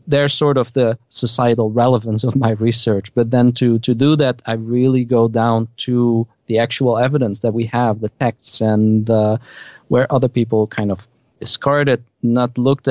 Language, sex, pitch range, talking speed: English, male, 110-130 Hz, 175 wpm